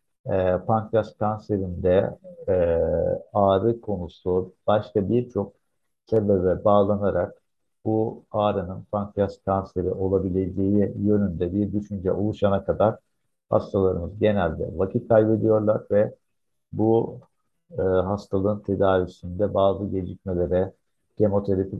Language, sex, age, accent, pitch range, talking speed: Turkish, male, 50-69, native, 95-105 Hz, 80 wpm